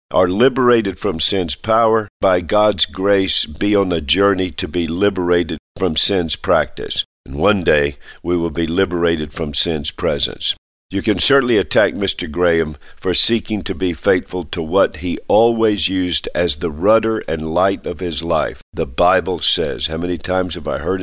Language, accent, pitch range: English, American, 85-105 Hz